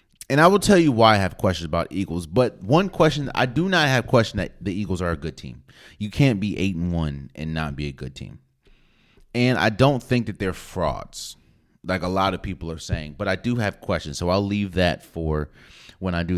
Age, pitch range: 30-49, 85-110 Hz